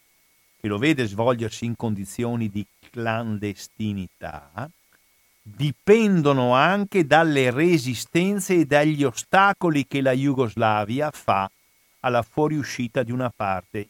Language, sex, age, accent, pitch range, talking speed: Italian, male, 50-69, native, 105-135 Hz, 105 wpm